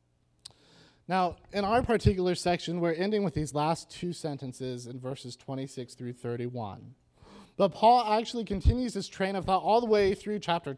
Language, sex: English, male